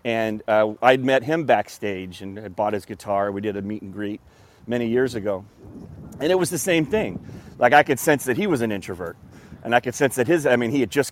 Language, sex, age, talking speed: English, male, 30-49, 250 wpm